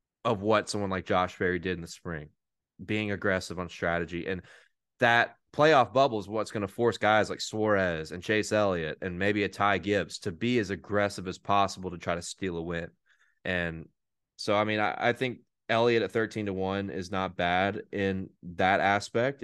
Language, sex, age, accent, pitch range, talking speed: English, male, 20-39, American, 90-110 Hz, 200 wpm